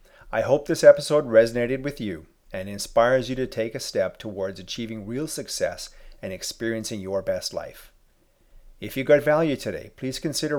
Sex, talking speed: male, 170 wpm